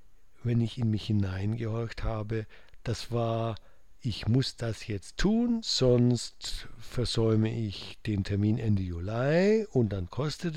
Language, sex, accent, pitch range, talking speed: German, male, German, 105-135 Hz, 130 wpm